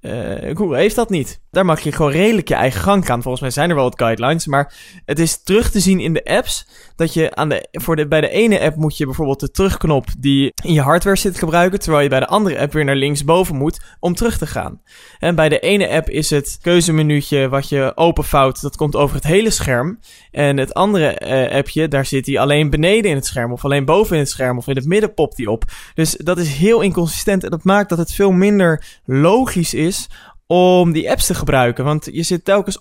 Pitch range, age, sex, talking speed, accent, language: 145-180 Hz, 20-39, male, 240 wpm, Dutch, Dutch